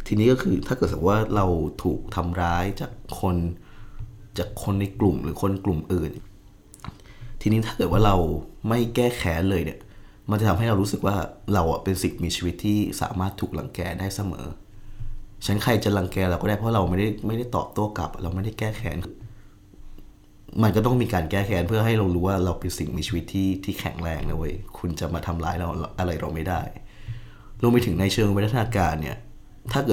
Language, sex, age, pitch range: Thai, male, 20-39, 85-105 Hz